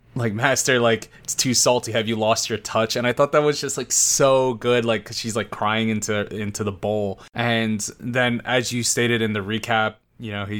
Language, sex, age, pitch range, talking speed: English, male, 20-39, 110-130 Hz, 225 wpm